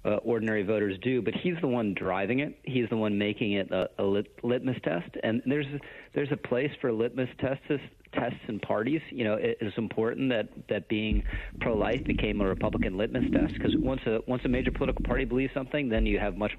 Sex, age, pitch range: male, 40-59, 105-130 Hz